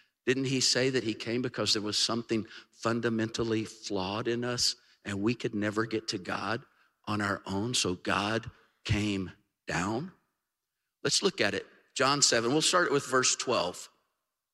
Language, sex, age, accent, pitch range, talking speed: English, male, 50-69, American, 105-130 Hz, 160 wpm